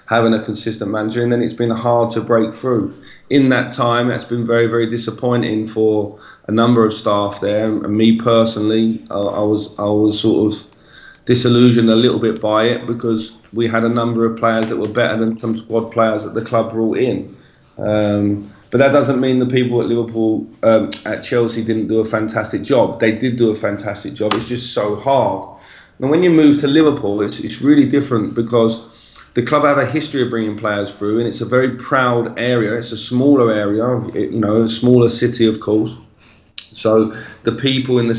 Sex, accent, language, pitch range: male, British, English, 110-125 Hz